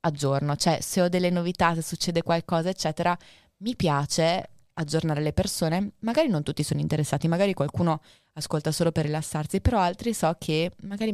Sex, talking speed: female, 165 wpm